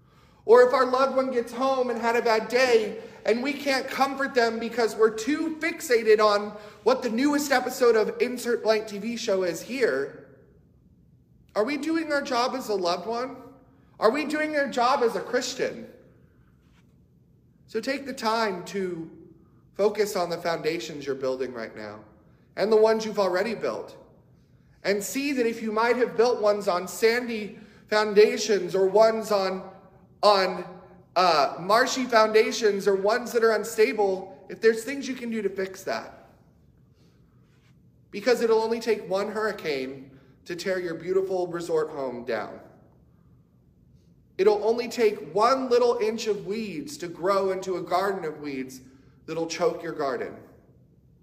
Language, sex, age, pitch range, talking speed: English, male, 40-59, 180-240 Hz, 155 wpm